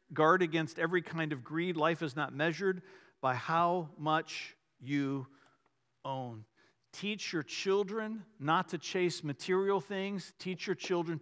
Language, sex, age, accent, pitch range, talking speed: English, male, 50-69, American, 155-210 Hz, 140 wpm